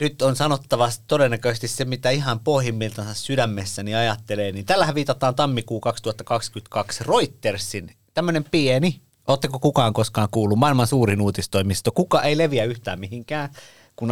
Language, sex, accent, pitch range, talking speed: Finnish, male, native, 105-130 Hz, 130 wpm